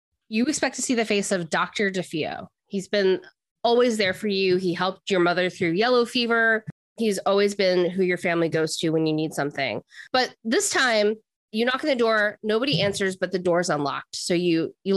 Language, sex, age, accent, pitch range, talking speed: English, female, 20-39, American, 170-220 Hz, 205 wpm